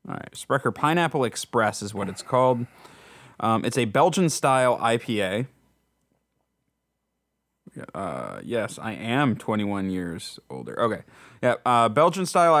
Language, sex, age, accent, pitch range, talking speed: English, male, 20-39, American, 110-140 Hz, 120 wpm